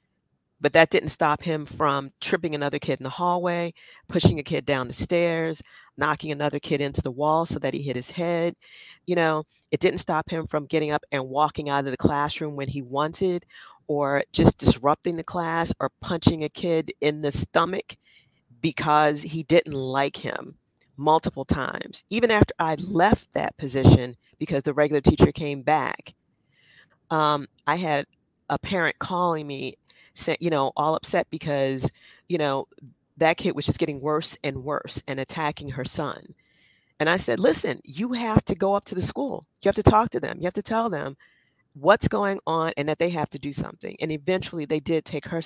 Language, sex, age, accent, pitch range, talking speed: English, female, 40-59, American, 140-170 Hz, 190 wpm